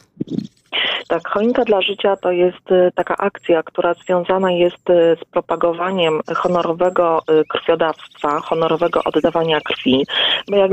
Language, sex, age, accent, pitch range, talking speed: Polish, female, 30-49, native, 165-205 Hz, 110 wpm